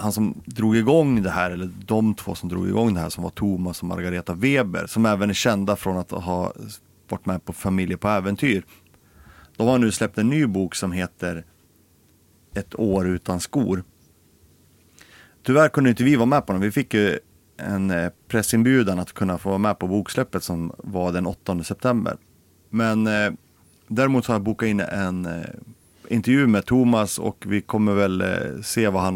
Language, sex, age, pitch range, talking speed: Swedish, male, 30-49, 90-110 Hz, 190 wpm